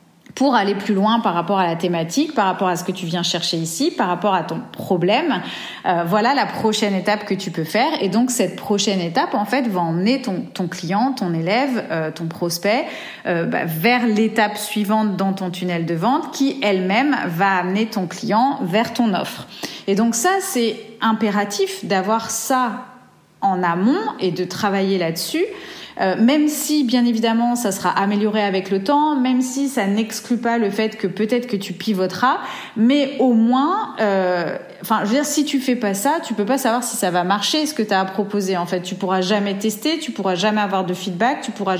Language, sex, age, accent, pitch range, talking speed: French, female, 30-49, French, 190-240 Hz, 205 wpm